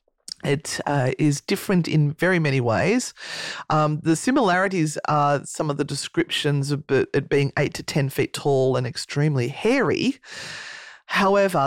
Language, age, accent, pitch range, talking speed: English, 40-59, Australian, 145-180 Hz, 145 wpm